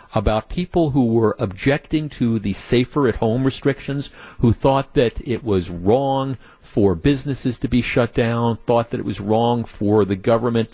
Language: English